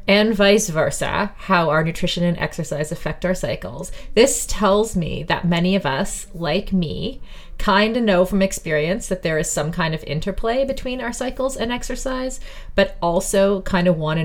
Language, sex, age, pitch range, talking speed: English, female, 30-49, 155-195 Hz, 180 wpm